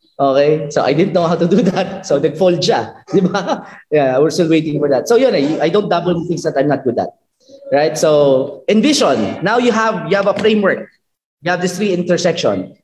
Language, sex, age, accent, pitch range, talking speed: Filipino, male, 20-39, native, 150-220 Hz, 220 wpm